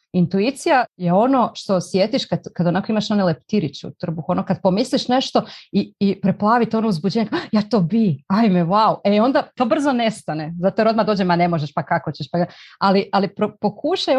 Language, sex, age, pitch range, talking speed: Croatian, female, 30-49, 170-225 Hz, 210 wpm